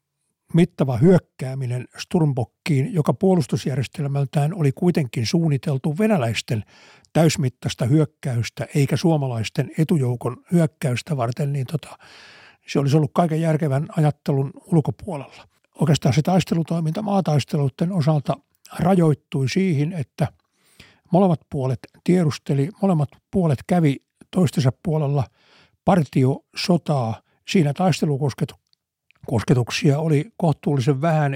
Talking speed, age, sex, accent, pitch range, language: 90 wpm, 60-79, male, native, 135-165 Hz, Finnish